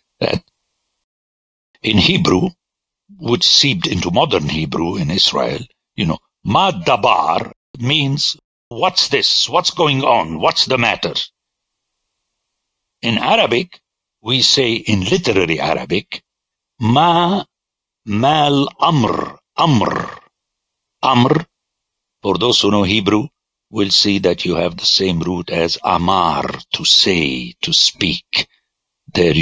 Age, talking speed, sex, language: 60-79, 110 wpm, male, English